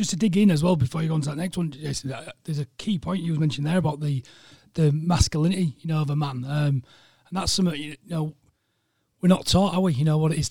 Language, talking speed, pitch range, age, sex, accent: English, 275 wpm, 150-175 Hz, 30-49, male, British